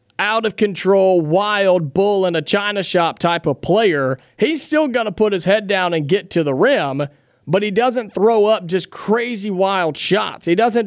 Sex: male